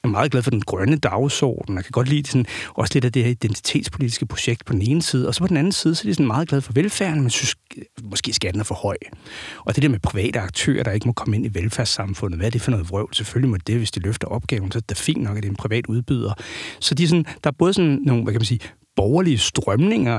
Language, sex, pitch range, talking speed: Danish, male, 110-145 Hz, 290 wpm